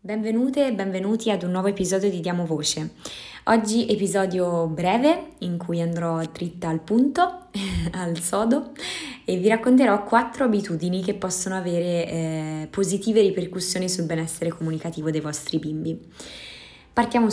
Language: Italian